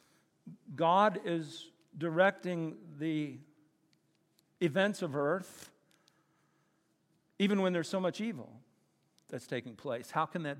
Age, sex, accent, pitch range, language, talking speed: 50-69, male, American, 155-200 Hz, English, 110 wpm